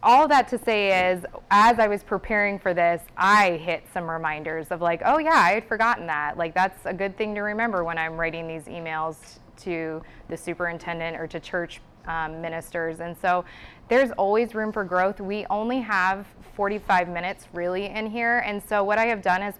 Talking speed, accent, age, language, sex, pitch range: 200 wpm, American, 20-39, English, female, 170-205 Hz